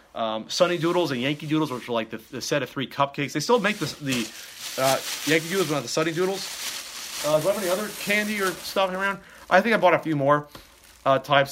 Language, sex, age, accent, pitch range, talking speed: English, male, 30-49, American, 110-165 Hz, 245 wpm